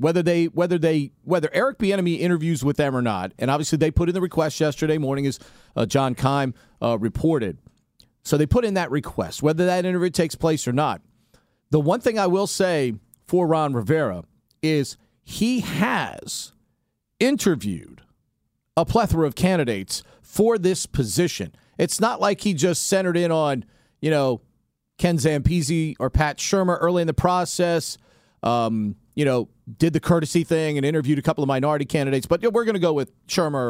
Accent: American